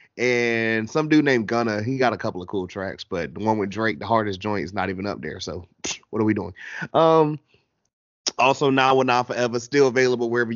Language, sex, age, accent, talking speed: English, male, 30-49, American, 220 wpm